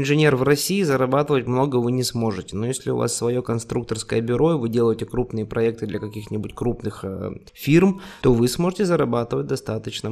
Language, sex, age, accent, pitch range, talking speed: Russian, male, 20-39, native, 115-135 Hz, 170 wpm